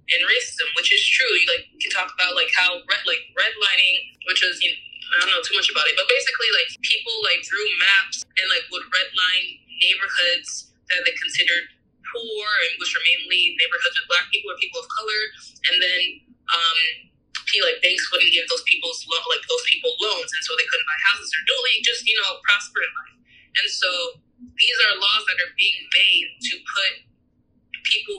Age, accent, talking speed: 20-39, American, 210 wpm